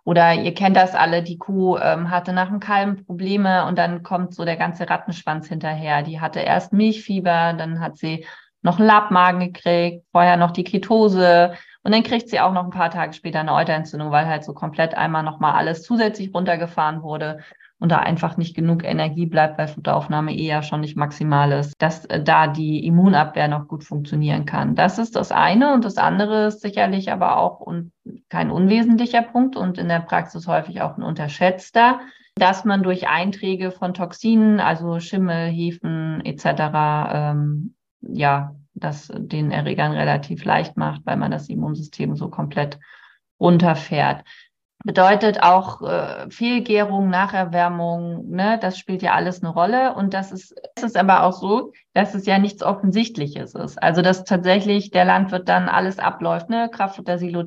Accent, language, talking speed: German, German, 175 wpm